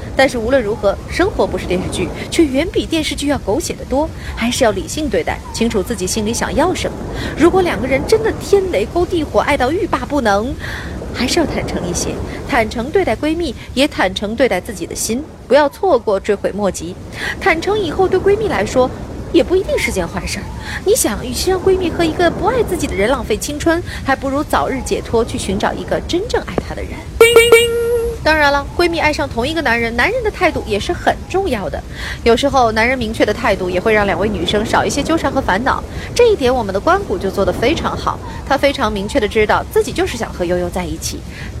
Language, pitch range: Chinese, 230-370 Hz